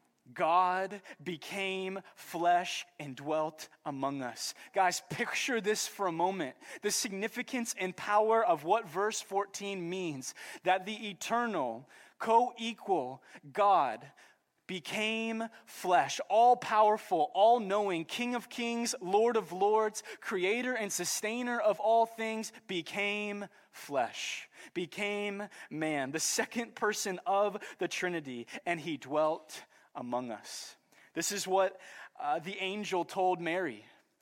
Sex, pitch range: male, 165-210 Hz